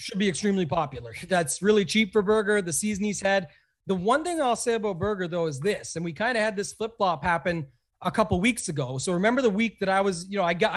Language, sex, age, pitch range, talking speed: English, male, 30-49, 180-220 Hz, 255 wpm